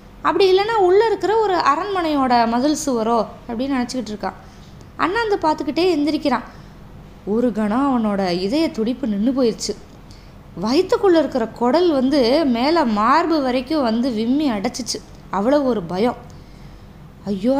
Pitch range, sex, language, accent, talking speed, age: 225-305 Hz, female, Tamil, native, 125 wpm, 20-39